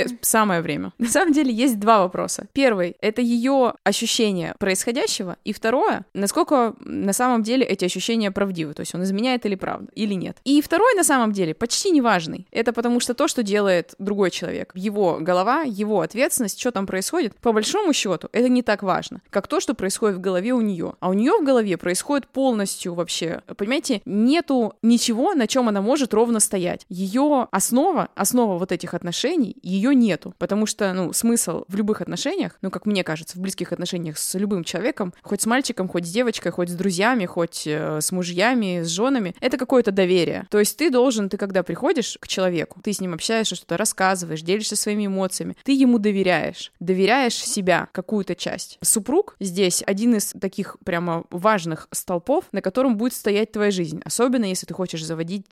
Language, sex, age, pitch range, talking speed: Russian, female, 20-39, 180-245 Hz, 185 wpm